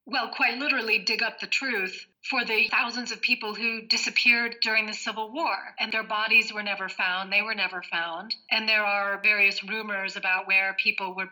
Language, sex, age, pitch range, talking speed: English, female, 40-59, 195-230 Hz, 195 wpm